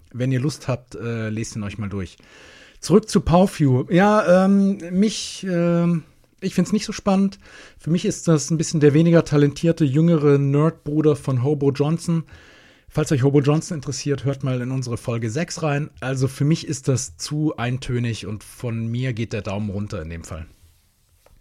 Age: 40-59